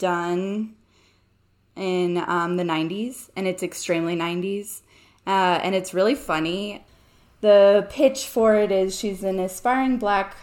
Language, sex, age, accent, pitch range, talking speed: English, female, 20-39, American, 165-200 Hz, 130 wpm